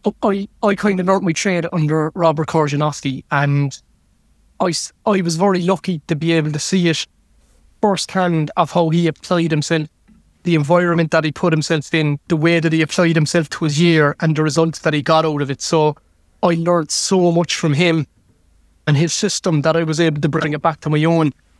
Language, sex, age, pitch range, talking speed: English, male, 20-39, 150-175 Hz, 205 wpm